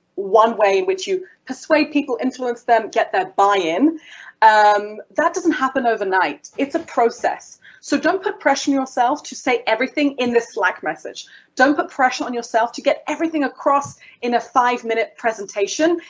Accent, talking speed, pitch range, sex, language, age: British, 170 wpm, 230-310 Hz, female, English, 30-49